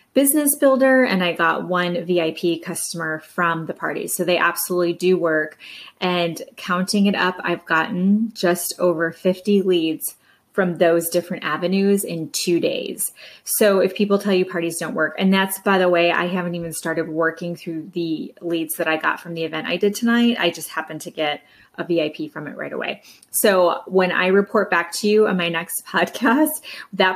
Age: 20-39